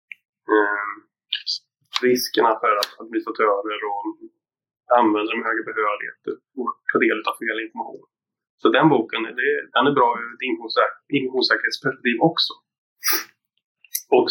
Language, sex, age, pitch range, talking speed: Swedish, male, 20-39, 280-420 Hz, 115 wpm